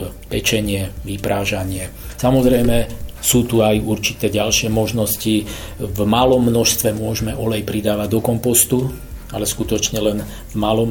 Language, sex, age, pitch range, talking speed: Slovak, male, 40-59, 100-115 Hz, 120 wpm